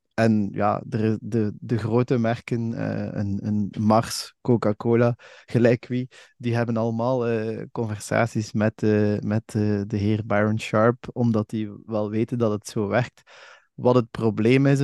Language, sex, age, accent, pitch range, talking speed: Dutch, male, 20-39, Dutch, 110-125 Hz, 160 wpm